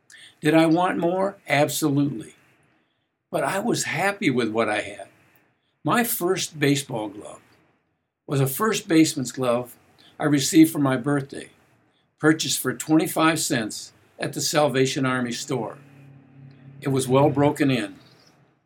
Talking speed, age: 130 wpm, 60-79